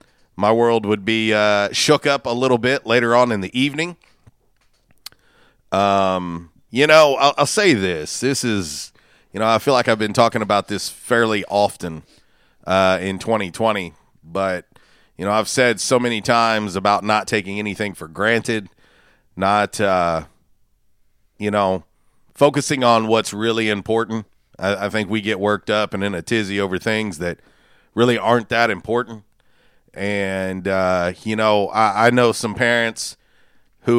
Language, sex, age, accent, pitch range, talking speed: English, male, 40-59, American, 95-115 Hz, 160 wpm